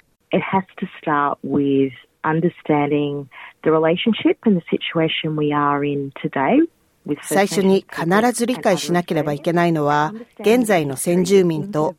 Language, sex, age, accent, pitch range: Japanese, female, 40-59, Australian, 155-210 Hz